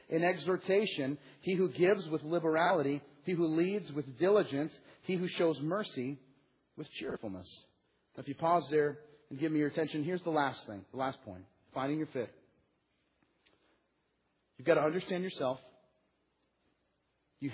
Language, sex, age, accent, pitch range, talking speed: English, male, 40-59, American, 135-175 Hz, 145 wpm